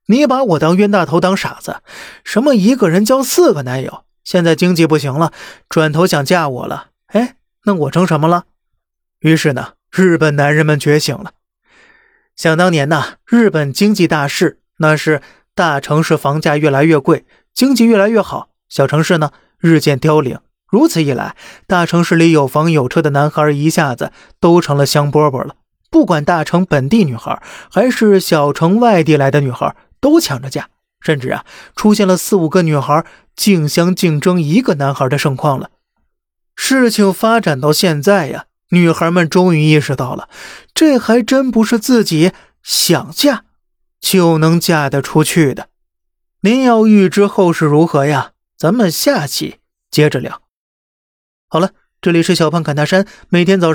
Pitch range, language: 150-195 Hz, Chinese